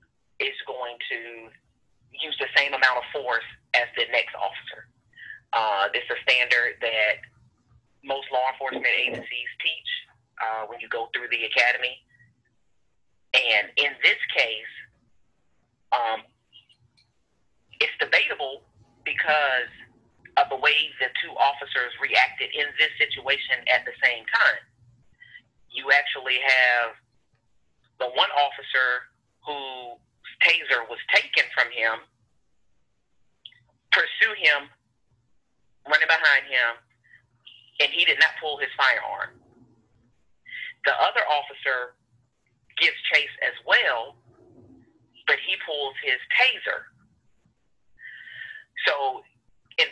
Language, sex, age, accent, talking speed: English, male, 30-49, American, 110 wpm